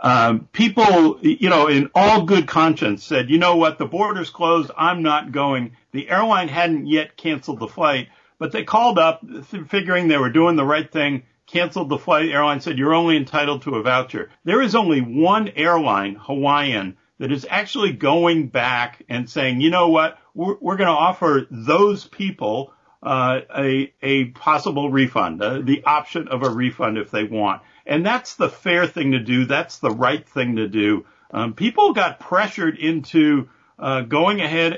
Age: 50-69